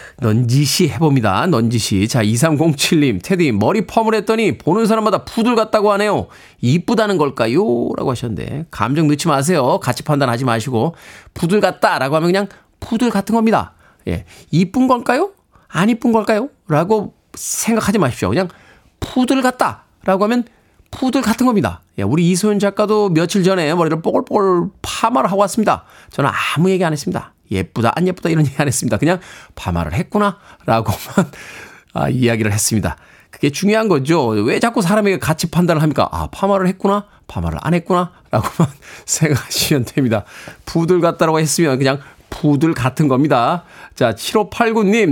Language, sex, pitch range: Korean, male, 130-200 Hz